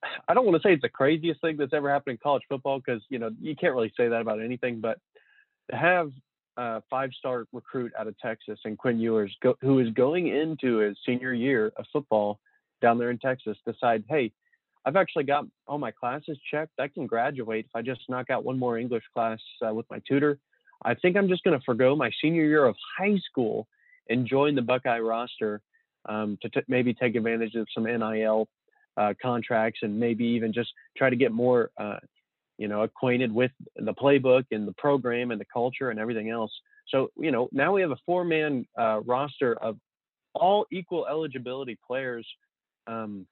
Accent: American